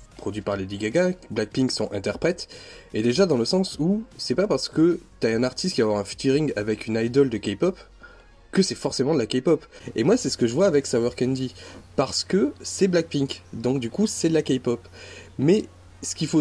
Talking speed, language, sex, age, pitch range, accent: 225 wpm, French, male, 20-39, 105-170 Hz, French